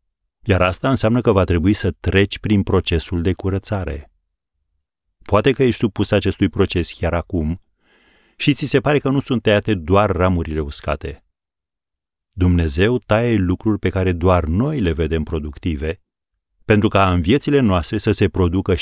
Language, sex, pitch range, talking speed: Romanian, male, 80-105 Hz, 155 wpm